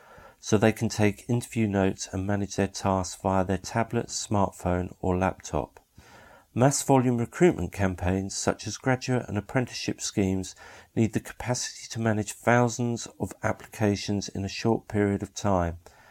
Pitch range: 95-115 Hz